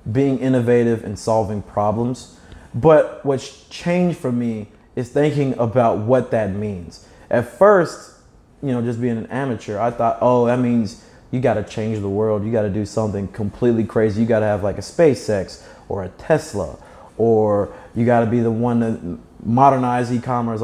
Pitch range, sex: 110-145 Hz, male